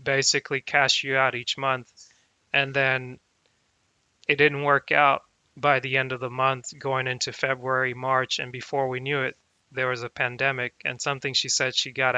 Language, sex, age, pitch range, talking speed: English, male, 20-39, 125-140 Hz, 180 wpm